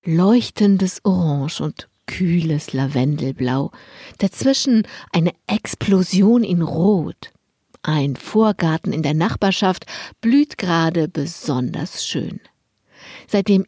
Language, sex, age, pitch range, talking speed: German, female, 60-79, 165-215 Hz, 90 wpm